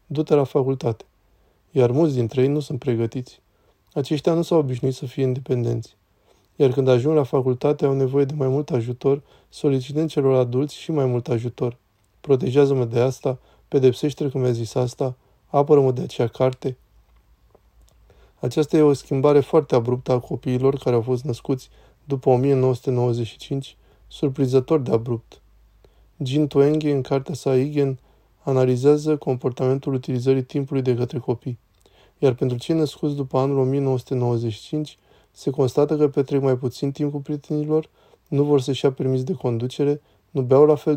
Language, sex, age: Romanian, male, 20-39